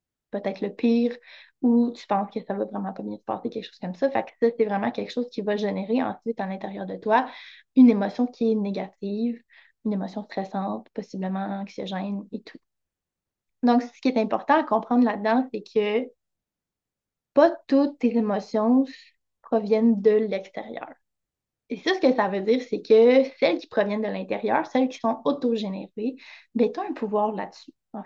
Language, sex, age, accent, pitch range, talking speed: French, female, 20-39, Canadian, 205-250 Hz, 185 wpm